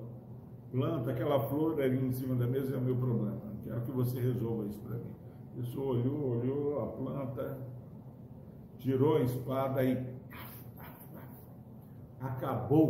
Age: 60-79